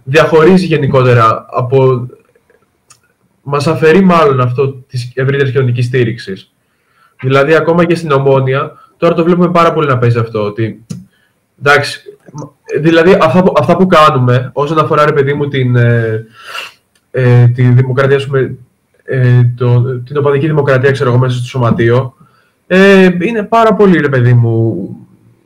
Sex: male